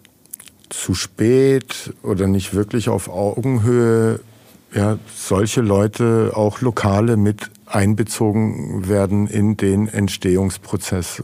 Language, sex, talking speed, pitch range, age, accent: German, male, 95 wpm, 100-115 Hz, 50-69, German